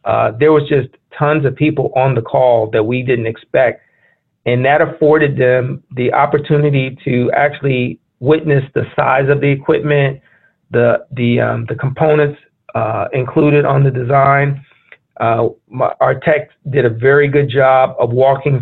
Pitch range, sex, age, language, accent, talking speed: 125-145 Hz, male, 40-59, English, American, 160 wpm